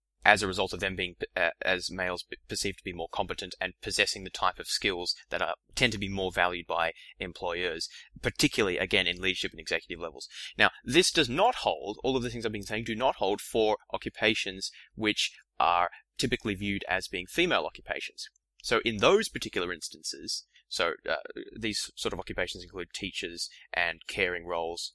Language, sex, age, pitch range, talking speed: English, male, 20-39, 95-115 Hz, 185 wpm